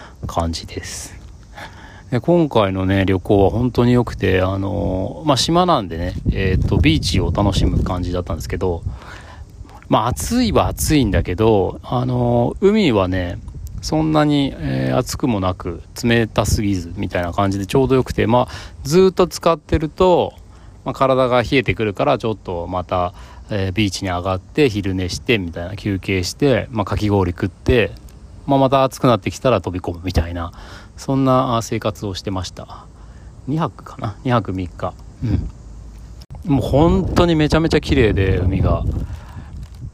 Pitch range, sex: 90-125 Hz, male